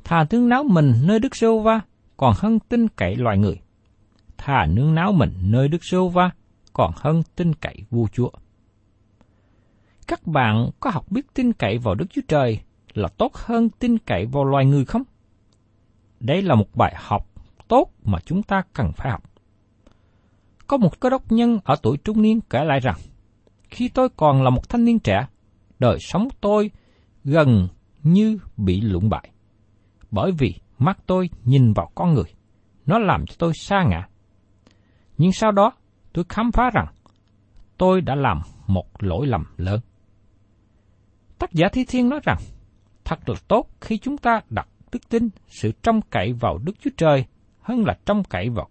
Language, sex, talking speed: Vietnamese, male, 175 wpm